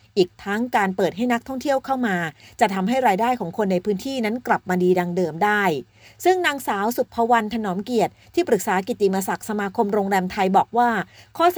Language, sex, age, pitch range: Thai, female, 30-49, 185-245 Hz